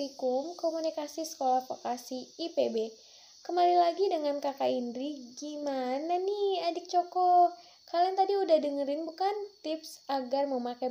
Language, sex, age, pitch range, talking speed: Indonesian, female, 10-29, 250-320 Hz, 120 wpm